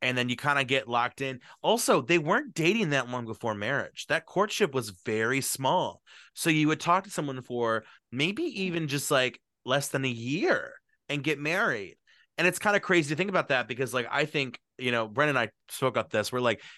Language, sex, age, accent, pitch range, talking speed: English, male, 20-39, American, 125-170 Hz, 220 wpm